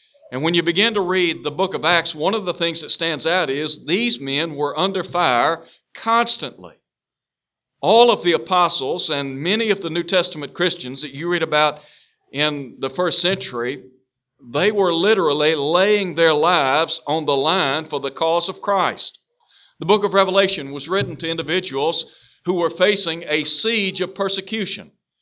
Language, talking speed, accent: English, 170 wpm, American